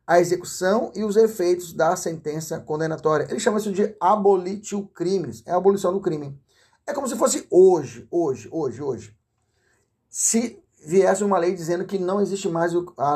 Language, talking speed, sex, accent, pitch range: Portuguese, 170 wpm, male, Brazilian, 145-200 Hz